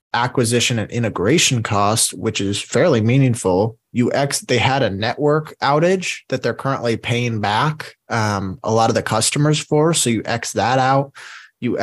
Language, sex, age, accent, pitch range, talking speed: English, male, 20-39, American, 110-140 Hz, 165 wpm